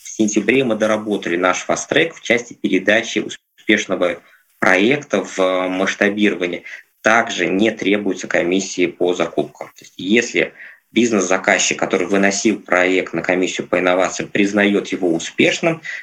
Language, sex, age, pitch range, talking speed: Russian, male, 20-39, 95-110 Hz, 115 wpm